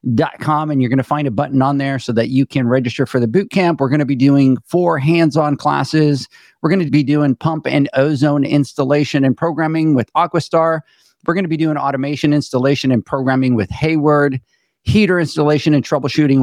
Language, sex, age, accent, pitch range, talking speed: English, male, 50-69, American, 120-150 Hz, 200 wpm